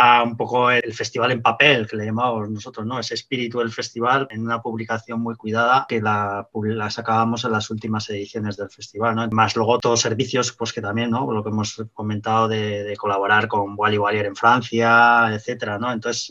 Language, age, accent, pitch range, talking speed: Spanish, 20-39, Spanish, 105-120 Hz, 200 wpm